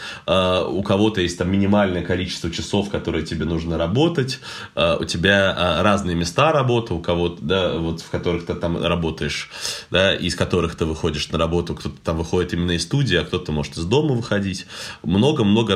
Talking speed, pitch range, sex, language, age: 170 wpm, 75-100 Hz, male, Russian, 20-39